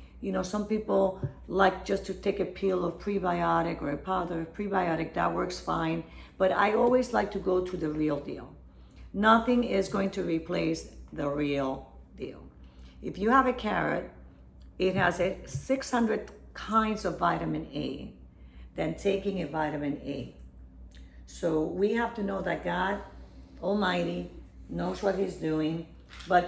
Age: 50-69